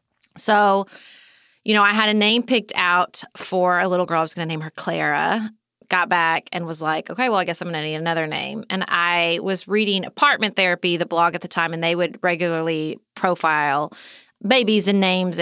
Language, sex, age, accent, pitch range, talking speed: English, female, 30-49, American, 175-220 Hz, 210 wpm